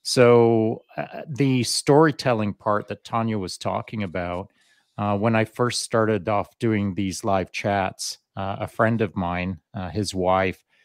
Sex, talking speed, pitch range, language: male, 155 wpm, 100-120 Hz, English